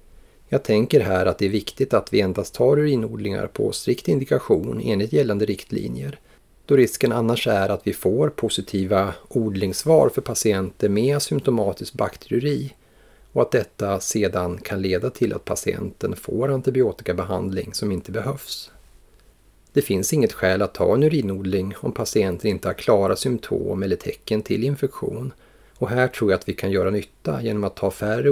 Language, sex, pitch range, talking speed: Swedish, male, 100-115 Hz, 165 wpm